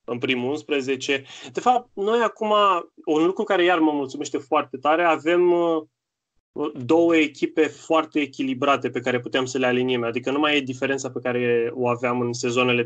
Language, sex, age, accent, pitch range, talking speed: Romanian, male, 20-39, native, 125-150 Hz, 175 wpm